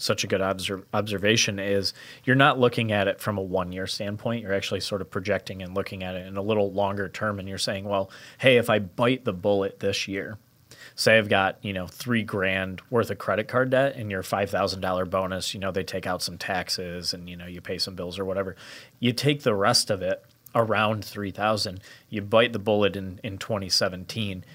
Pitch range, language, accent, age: 95-115 Hz, English, American, 30-49